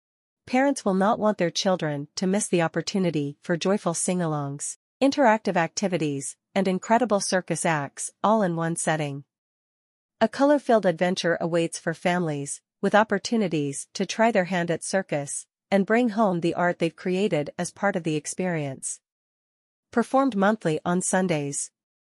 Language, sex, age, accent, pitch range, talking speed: English, female, 40-59, American, 165-200 Hz, 145 wpm